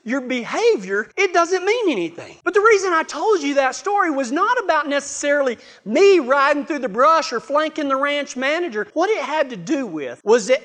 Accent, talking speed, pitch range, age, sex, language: American, 205 wpm, 225-300 Hz, 40-59, male, English